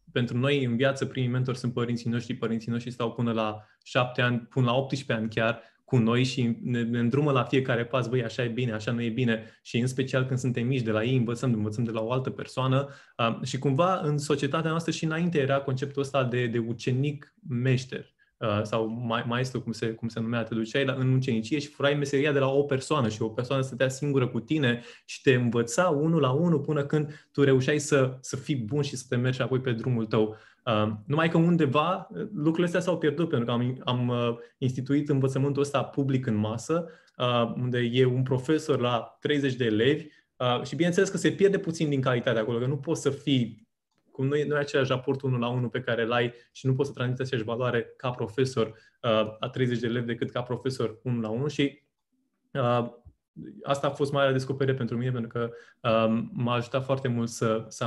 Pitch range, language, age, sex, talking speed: 120-140 Hz, Romanian, 20-39, male, 225 wpm